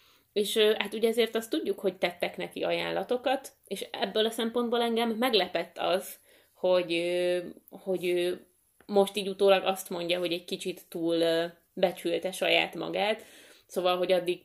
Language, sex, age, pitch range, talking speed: Hungarian, female, 20-39, 170-200 Hz, 140 wpm